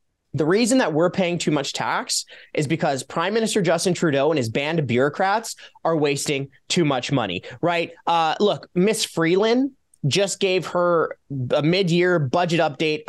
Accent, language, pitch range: American, English, 145-190 Hz